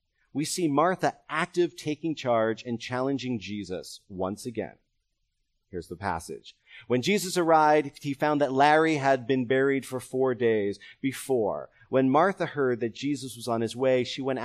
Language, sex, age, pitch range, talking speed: English, male, 30-49, 110-150 Hz, 160 wpm